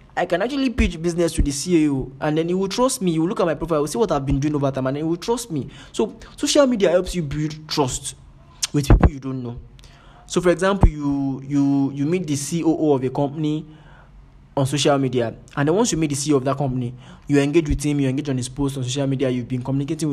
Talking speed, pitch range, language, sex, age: 255 wpm, 135-165 Hz, English, male, 20-39